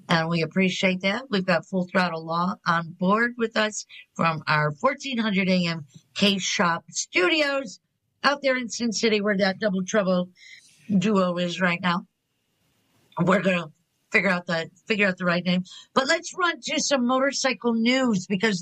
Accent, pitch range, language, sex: American, 175-225 Hz, English, female